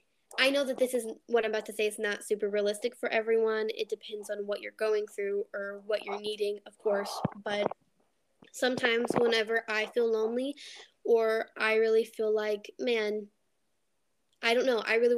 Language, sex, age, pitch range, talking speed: English, female, 10-29, 215-240 Hz, 180 wpm